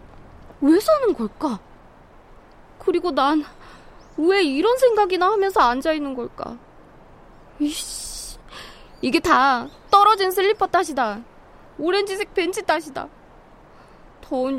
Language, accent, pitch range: Korean, native, 245-375 Hz